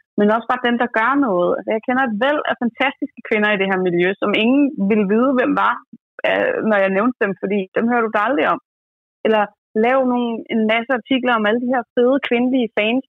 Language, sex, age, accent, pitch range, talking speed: Danish, female, 30-49, native, 205-250 Hz, 210 wpm